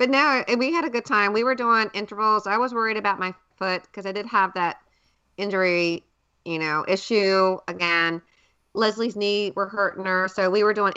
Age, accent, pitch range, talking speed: 30-49, American, 185-235 Hz, 195 wpm